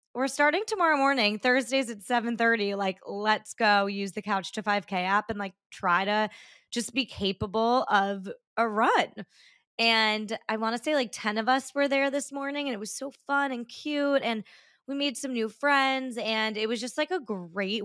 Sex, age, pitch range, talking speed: female, 20-39, 195-245 Hz, 200 wpm